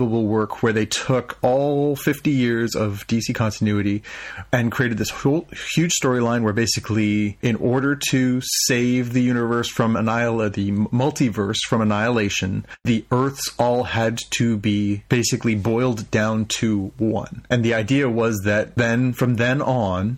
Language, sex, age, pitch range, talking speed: English, male, 30-49, 105-130 Hz, 150 wpm